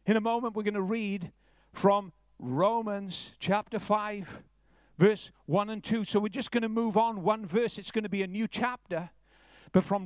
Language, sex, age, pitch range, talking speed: English, male, 50-69, 210-255 Hz, 195 wpm